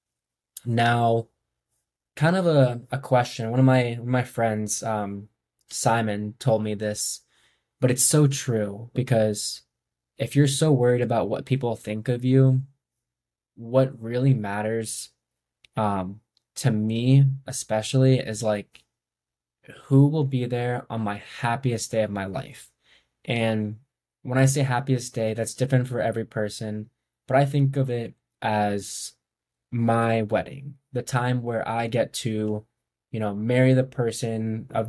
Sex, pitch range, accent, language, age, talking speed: male, 110-130 Hz, American, English, 10-29, 140 wpm